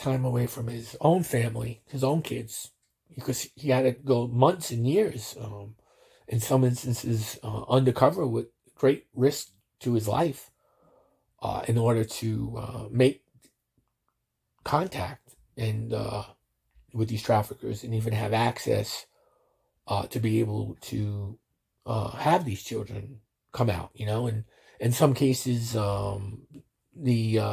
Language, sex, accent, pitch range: English, male, American, 110-130 Hz